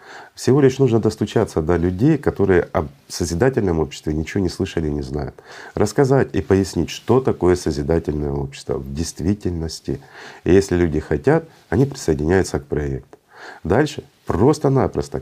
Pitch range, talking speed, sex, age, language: 75-100 Hz, 140 wpm, male, 40-59, Russian